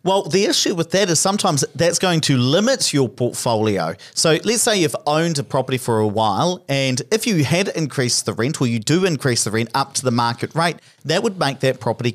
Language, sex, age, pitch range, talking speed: English, male, 40-59, 120-170 Hz, 225 wpm